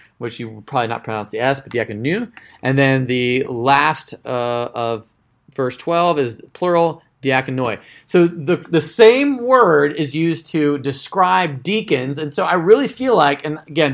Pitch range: 135-175 Hz